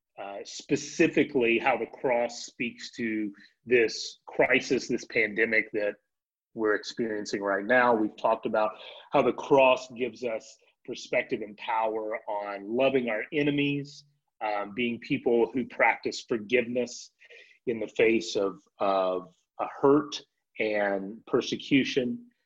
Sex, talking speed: male, 125 wpm